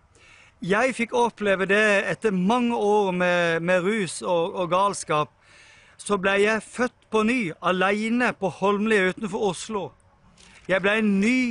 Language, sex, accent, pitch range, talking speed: English, male, Swedish, 185-235 Hz, 140 wpm